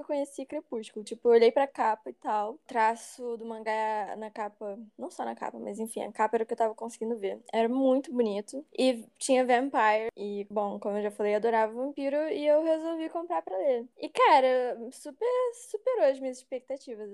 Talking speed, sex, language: 205 wpm, female, Portuguese